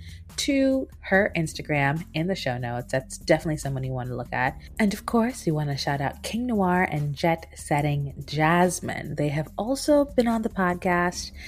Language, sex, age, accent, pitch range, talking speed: English, female, 30-49, American, 130-170 Hz, 190 wpm